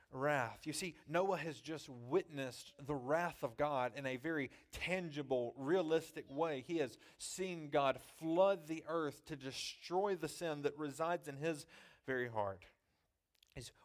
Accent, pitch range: American, 130-160 Hz